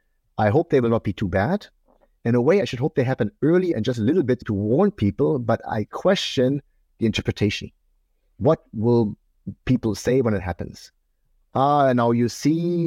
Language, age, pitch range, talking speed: English, 50-69, 95-125 Hz, 190 wpm